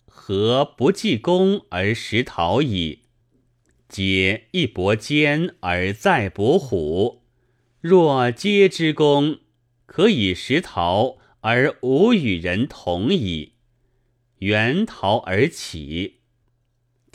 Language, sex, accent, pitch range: Chinese, male, native, 100-130 Hz